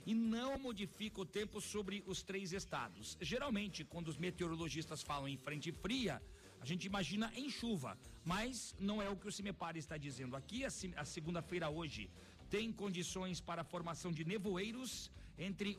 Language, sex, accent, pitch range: Portuguese, male, Brazilian, 160-205 Hz